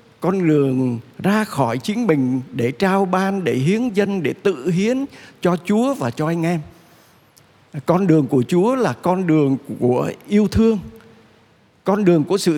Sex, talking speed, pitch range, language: male, 165 wpm, 135-210 Hz, Vietnamese